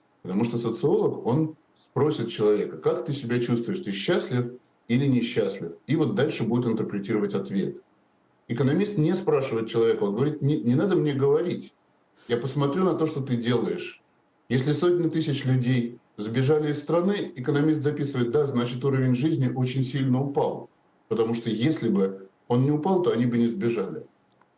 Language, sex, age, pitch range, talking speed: Russian, male, 50-69, 110-140 Hz, 160 wpm